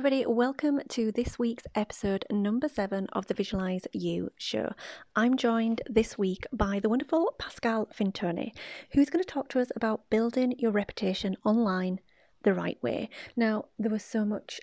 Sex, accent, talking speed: female, British, 165 wpm